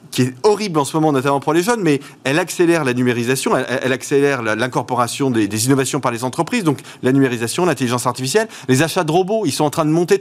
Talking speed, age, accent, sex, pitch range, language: 240 wpm, 30-49, French, male, 130-175 Hz, French